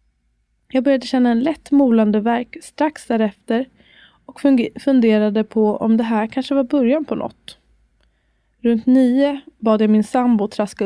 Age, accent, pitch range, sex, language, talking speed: 20-39, native, 205-245 Hz, female, Swedish, 150 wpm